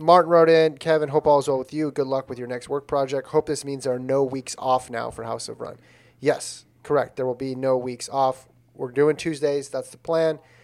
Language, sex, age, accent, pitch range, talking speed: English, male, 30-49, American, 120-160 Hz, 250 wpm